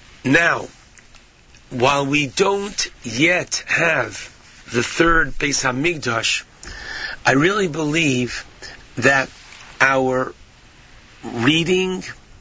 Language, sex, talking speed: English, male, 75 wpm